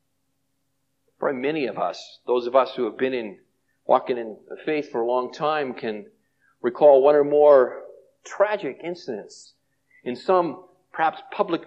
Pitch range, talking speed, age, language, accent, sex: 140-215 Hz, 155 wpm, 50-69, English, American, male